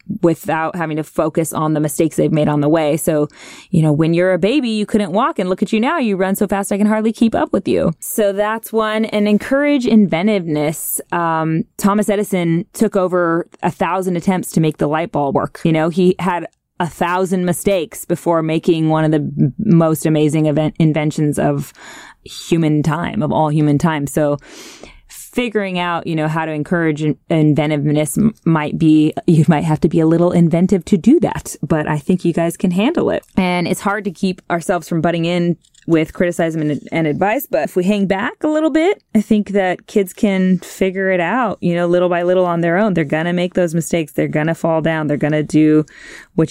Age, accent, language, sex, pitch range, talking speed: 20-39, American, English, female, 155-195 Hz, 215 wpm